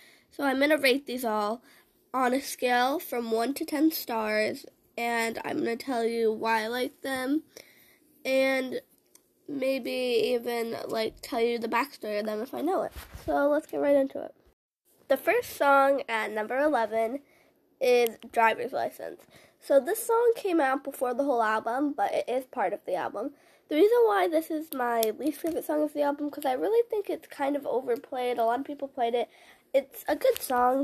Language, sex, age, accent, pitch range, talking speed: English, female, 10-29, American, 235-295 Hz, 195 wpm